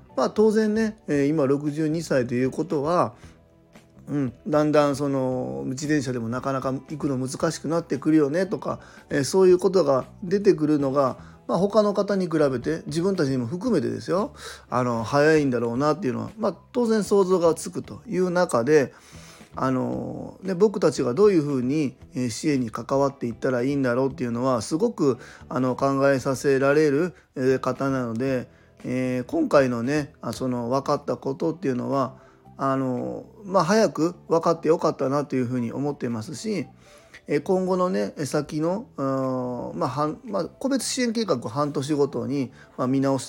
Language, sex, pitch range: Japanese, male, 130-170 Hz